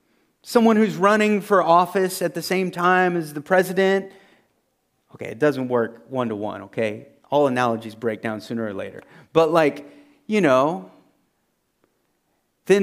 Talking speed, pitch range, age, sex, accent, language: 140 wpm, 140-205 Hz, 30-49, male, American, English